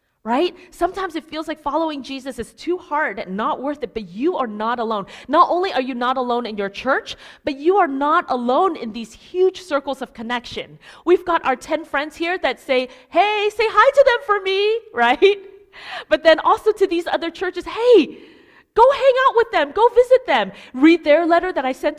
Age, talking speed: 30-49, 210 wpm